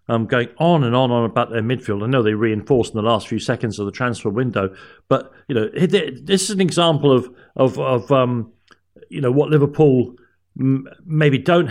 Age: 50-69